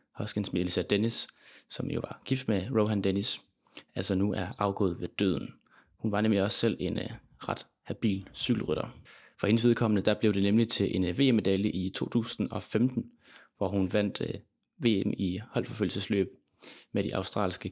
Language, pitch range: Danish, 95-115 Hz